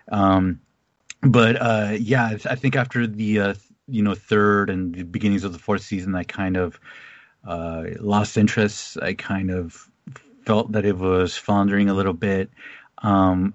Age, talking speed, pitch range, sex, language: 30-49, 165 wpm, 100-115 Hz, male, English